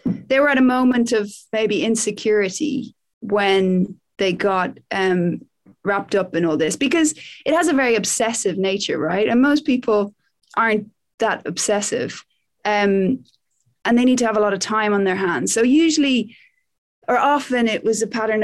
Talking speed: 170 wpm